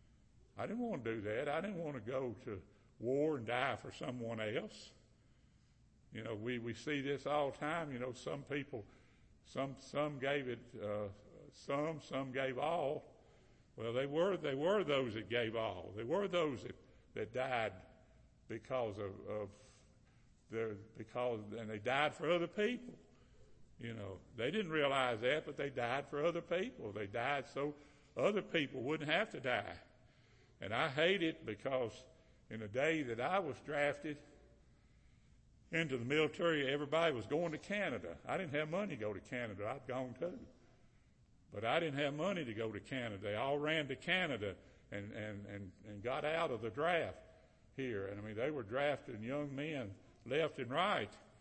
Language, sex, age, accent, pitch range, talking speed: English, male, 60-79, American, 110-145 Hz, 175 wpm